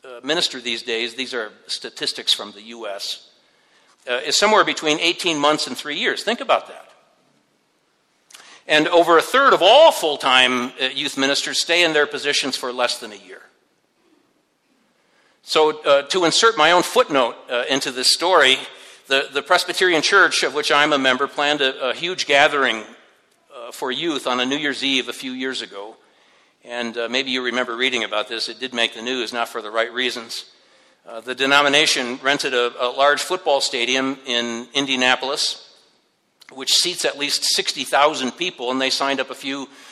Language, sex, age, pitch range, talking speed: English, male, 60-79, 125-150 Hz, 175 wpm